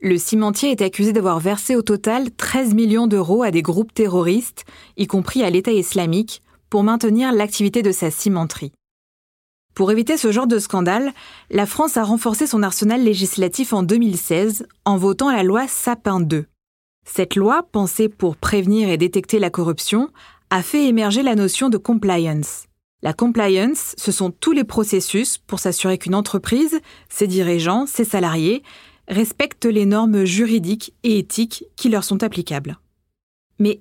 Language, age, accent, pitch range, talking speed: French, 20-39, French, 185-230 Hz, 160 wpm